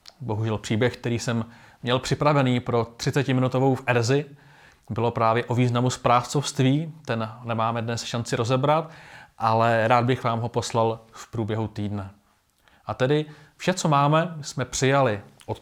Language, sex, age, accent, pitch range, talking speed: Czech, male, 30-49, native, 115-145 Hz, 140 wpm